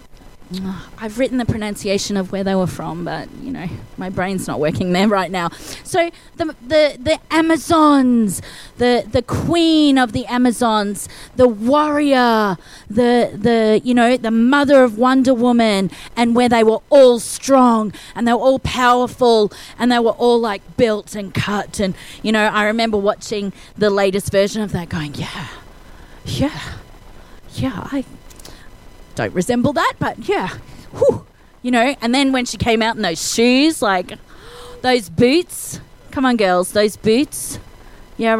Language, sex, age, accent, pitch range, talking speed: English, female, 30-49, Australian, 200-260 Hz, 160 wpm